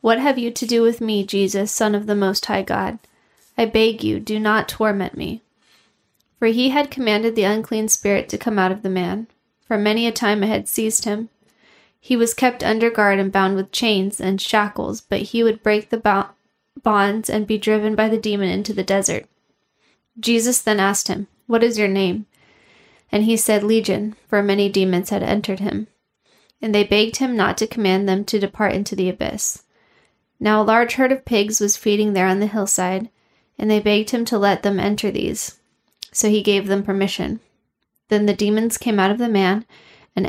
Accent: American